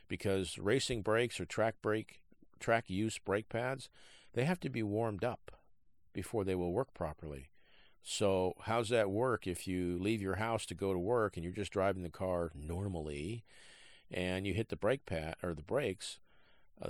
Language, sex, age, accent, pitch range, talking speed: English, male, 50-69, American, 90-105 Hz, 180 wpm